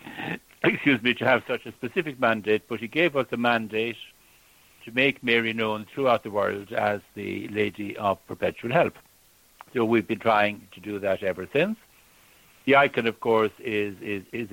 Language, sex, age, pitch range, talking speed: English, male, 60-79, 110-125 Hz, 175 wpm